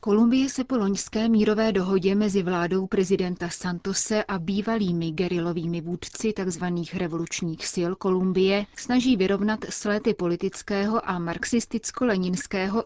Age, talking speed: 30-49, 105 wpm